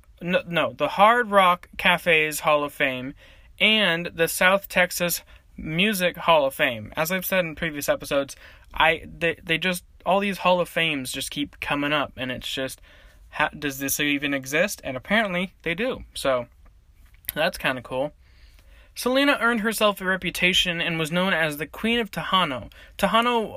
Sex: male